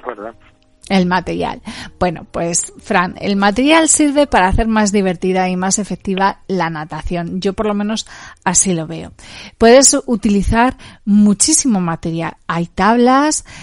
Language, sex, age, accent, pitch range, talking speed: Spanish, female, 40-59, Spanish, 195-260 Hz, 130 wpm